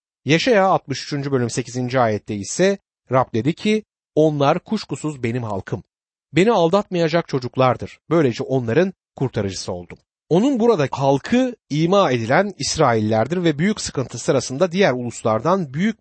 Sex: male